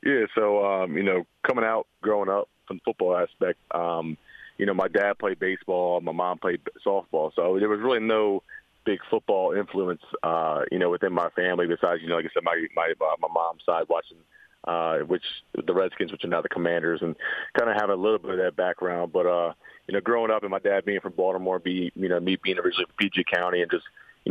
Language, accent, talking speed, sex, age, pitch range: English, American, 230 wpm, male, 30-49, 90-110 Hz